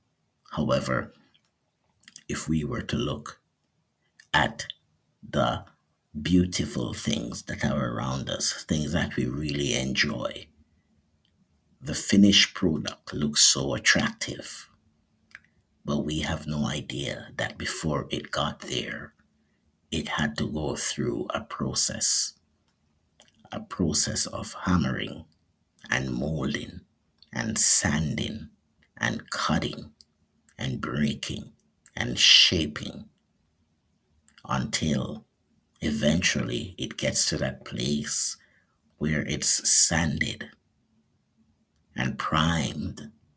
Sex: male